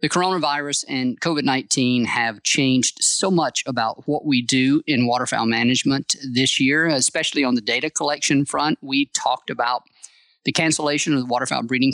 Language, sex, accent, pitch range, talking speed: English, male, American, 130-160 Hz, 160 wpm